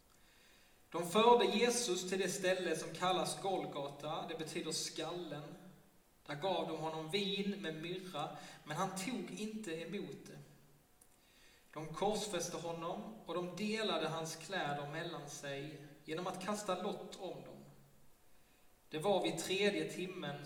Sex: male